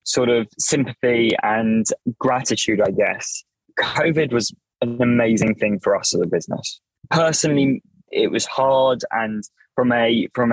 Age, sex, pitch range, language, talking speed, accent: 20-39, male, 105-120 Hz, English, 140 wpm, British